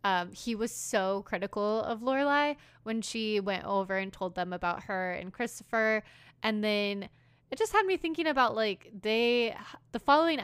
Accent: American